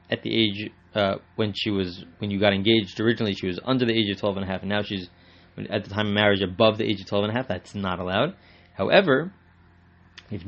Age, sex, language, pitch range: 20-39, male, English, 90-120 Hz